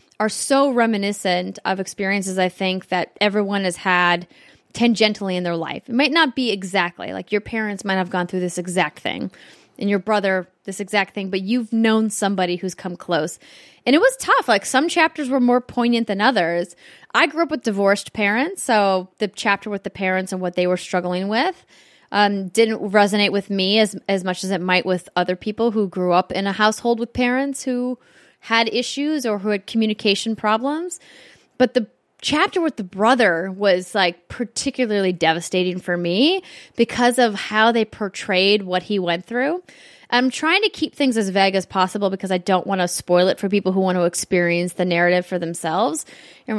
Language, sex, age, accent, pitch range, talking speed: English, female, 10-29, American, 185-235 Hz, 195 wpm